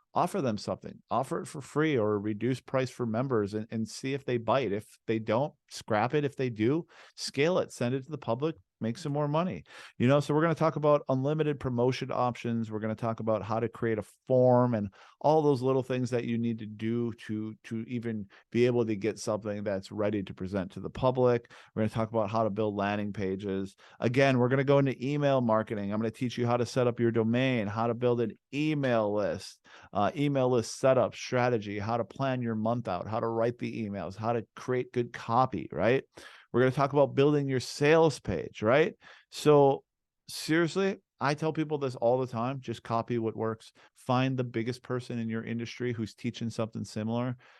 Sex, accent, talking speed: male, American, 220 wpm